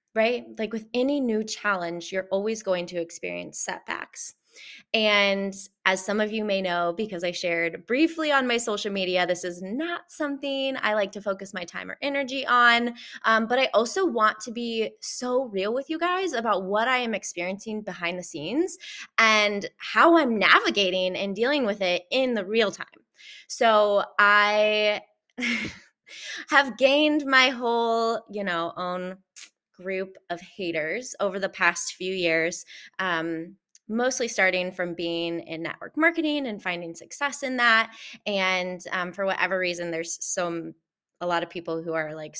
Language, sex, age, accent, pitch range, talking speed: English, female, 20-39, American, 180-250 Hz, 165 wpm